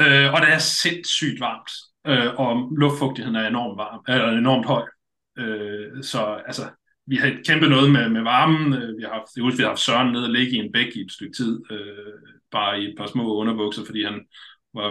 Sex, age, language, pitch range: male, 30-49, Danish, 110-145 Hz